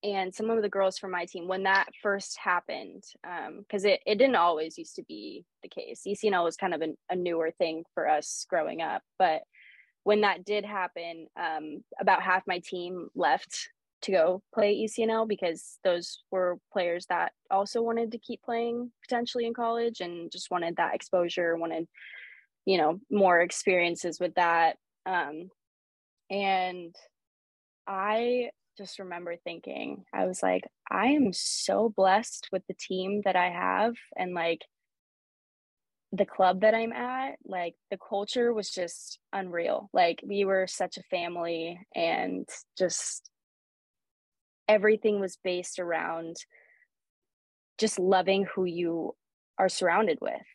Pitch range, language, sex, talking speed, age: 170-210 Hz, English, female, 145 wpm, 20-39